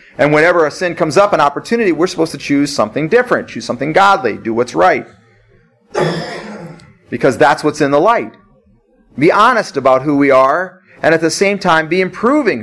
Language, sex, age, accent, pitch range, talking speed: English, male, 40-59, American, 140-200 Hz, 185 wpm